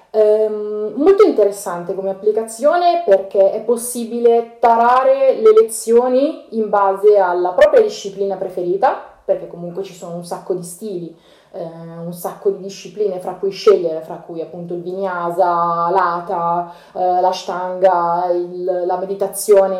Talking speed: 135 wpm